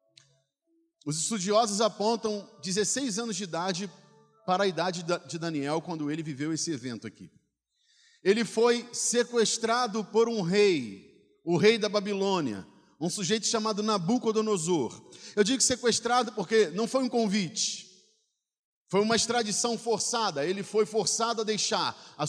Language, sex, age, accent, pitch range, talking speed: Portuguese, male, 40-59, Brazilian, 185-230 Hz, 135 wpm